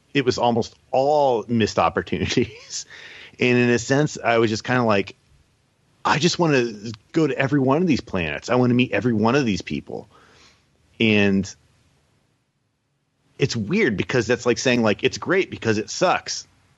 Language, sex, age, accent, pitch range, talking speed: English, male, 40-59, American, 95-125 Hz, 175 wpm